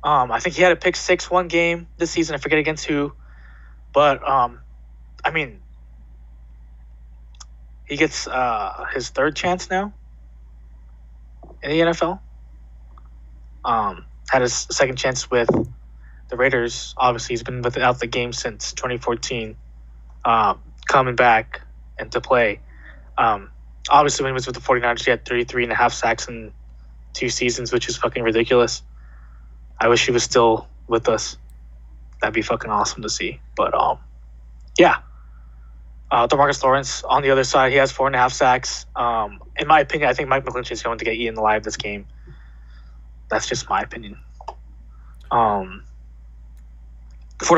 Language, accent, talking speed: English, American, 160 wpm